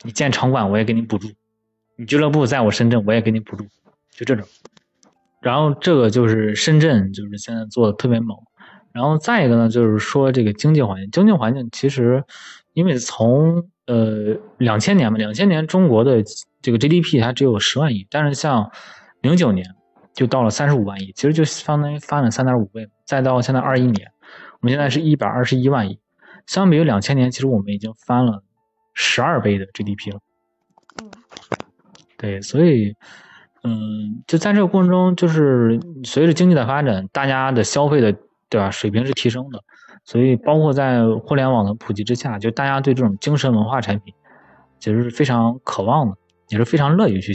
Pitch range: 110-145 Hz